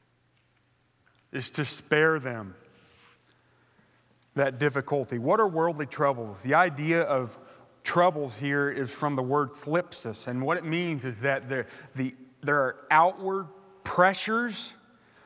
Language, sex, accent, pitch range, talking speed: English, male, American, 140-190 Hz, 125 wpm